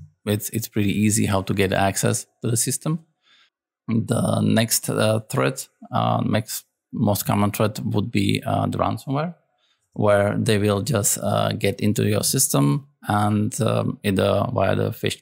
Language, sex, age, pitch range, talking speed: Slovak, male, 20-39, 95-115 Hz, 160 wpm